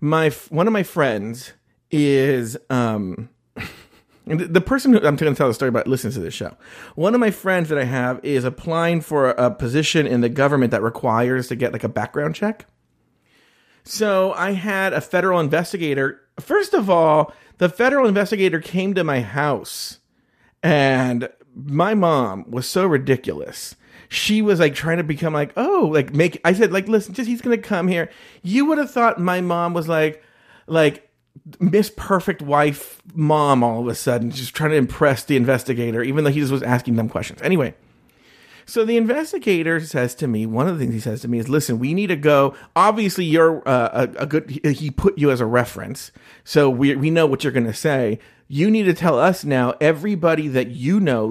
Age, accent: 40-59, American